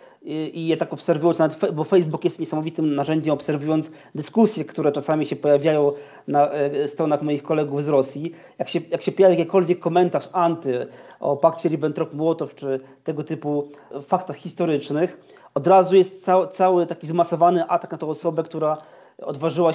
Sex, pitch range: male, 155-180 Hz